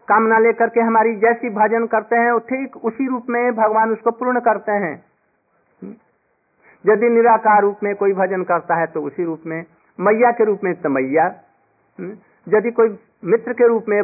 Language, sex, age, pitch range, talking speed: Hindi, male, 50-69, 175-230 Hz, 165 wpm